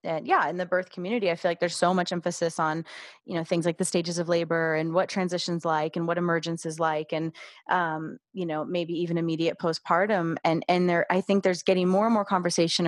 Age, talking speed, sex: 30-49, 235 wpm, female